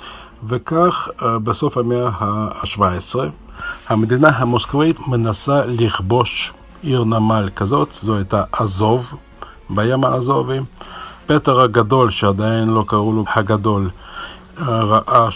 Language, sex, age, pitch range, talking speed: Hebrew, male, 50-69, 105-125 Hz, 95 wpm